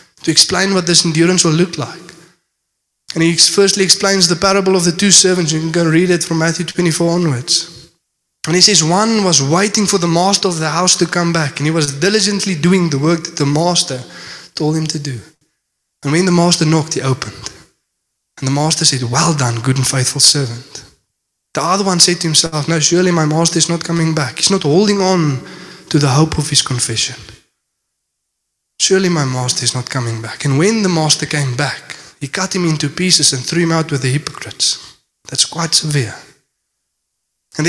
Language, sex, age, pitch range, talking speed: English, male, 20-39, 145-185 Hz, 200 wpm